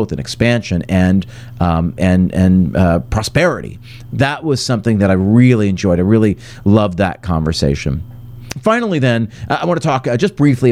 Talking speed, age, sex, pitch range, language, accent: 155 wpm, 40-59, male, 100-130 Hz, English, American